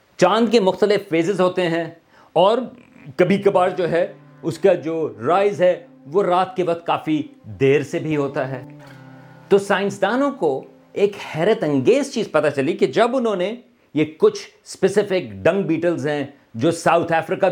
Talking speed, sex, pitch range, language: 165 wpm, male, 140-200 Hz, Urdu